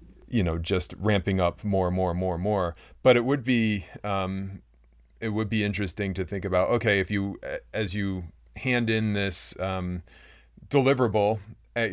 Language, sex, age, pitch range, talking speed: English, male, 30-49, 85-105 Hz, 175 wpm